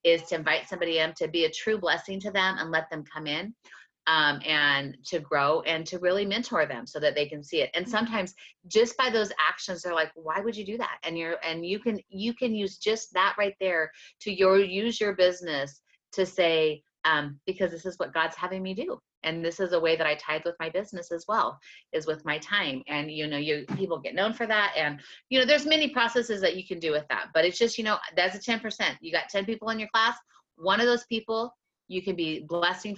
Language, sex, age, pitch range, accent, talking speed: English, female, 30-49, 160-220 Hz, American, 245 wpm